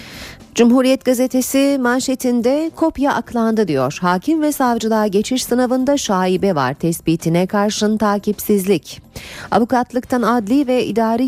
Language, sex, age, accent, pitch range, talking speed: Turkish, female, 40-59, native, 175-235 Hz, 105 wpm